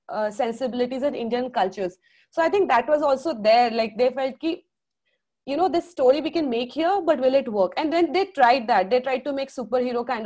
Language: English